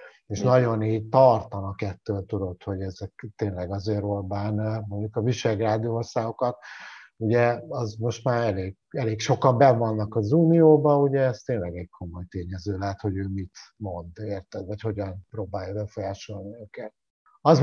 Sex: male